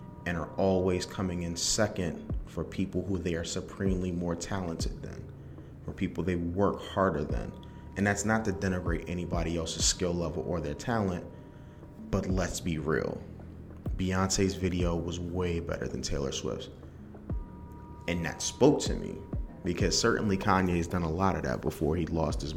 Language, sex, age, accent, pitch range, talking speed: English, male, 30-49, American, 80-95 Hz, 165 wpm